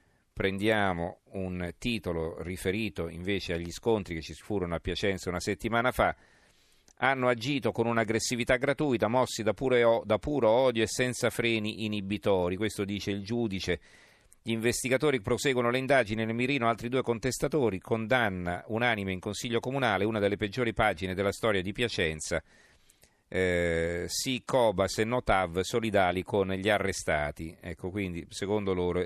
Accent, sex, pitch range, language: native, male, 90-115 Hz, Italian